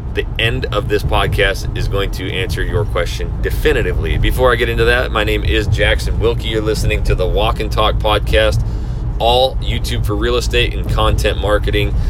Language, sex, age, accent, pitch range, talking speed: English, male, 30-49, American, 100-115 Hz, 190 wpm